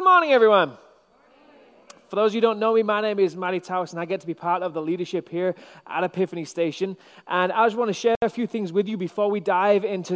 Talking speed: 255 wpm